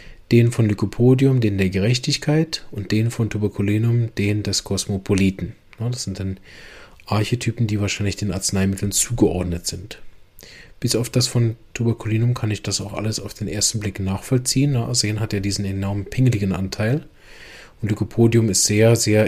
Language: German